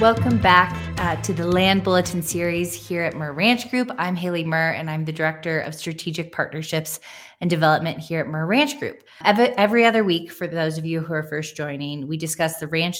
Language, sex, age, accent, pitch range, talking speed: English, female, 20-39, American, 155-180 Hz, 210 wpm